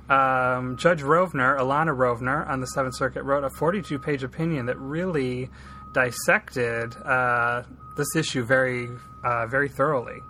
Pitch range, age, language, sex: 125-145 Hz, 30-49, English, male